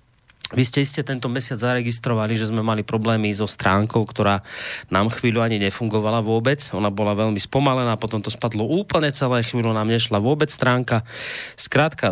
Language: Slovak